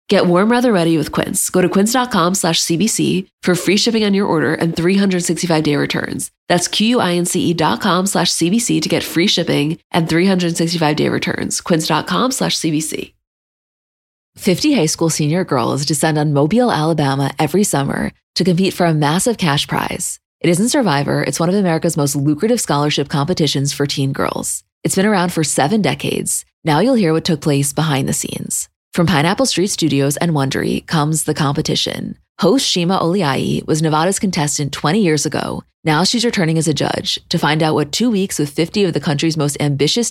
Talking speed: 180 wpm